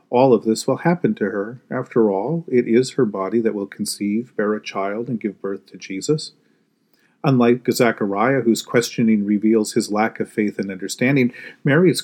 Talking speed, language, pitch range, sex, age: 180 wpm, English, 115-150 Hz, male, 40-59